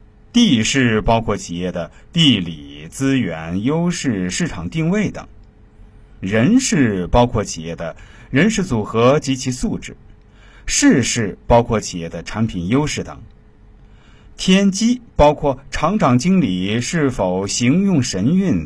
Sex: male